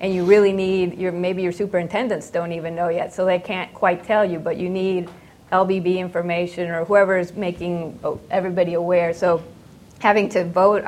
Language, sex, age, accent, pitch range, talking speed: English, female, 30-49, American, 165-185 Hz, 180 wpm